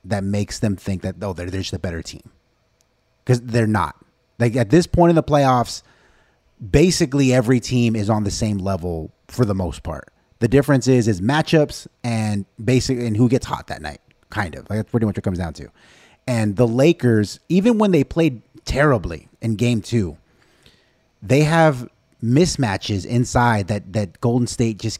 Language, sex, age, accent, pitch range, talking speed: English, male, 30-49, American, 105-125 Hz, 185 wpm